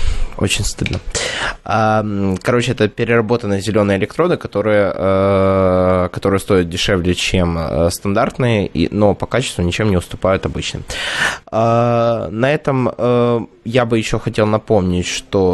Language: Russian